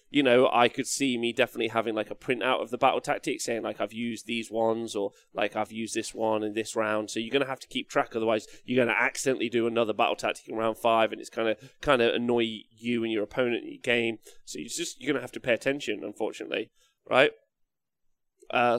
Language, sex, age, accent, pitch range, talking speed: English, male, 20-39, British, 115-140 Hz, 245 wpm